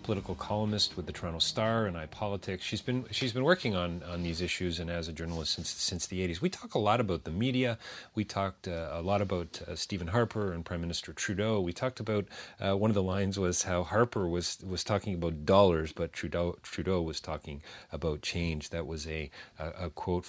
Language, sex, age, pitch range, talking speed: English, male, 40-59, 85-105 Hz, 220 wpm